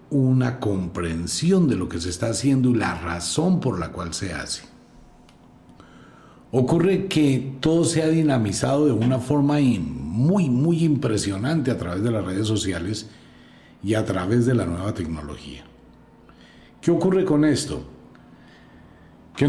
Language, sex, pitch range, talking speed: Spanish, male, 95-135 Hz, 140 wpm